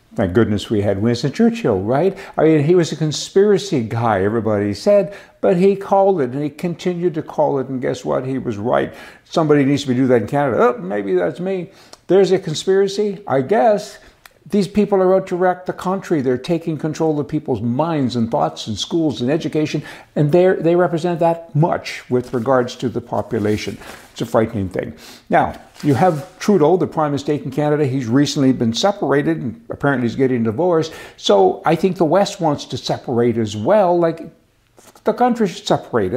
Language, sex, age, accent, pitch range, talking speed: English, male, 60-79, American, 130-185 Hz, 190 wpm